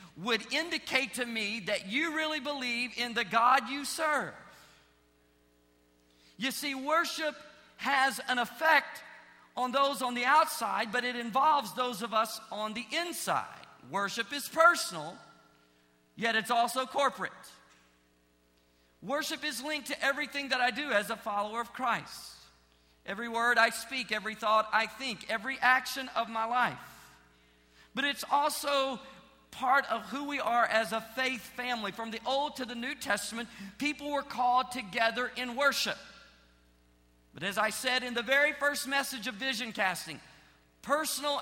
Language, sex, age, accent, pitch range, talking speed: English, male, 50-69, American, 210-280 Hz, 150 wpm